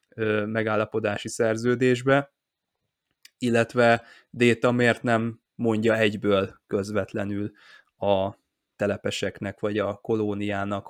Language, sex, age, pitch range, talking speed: Hungarian, male, 20-39, 105-120 Hz, 75 wpm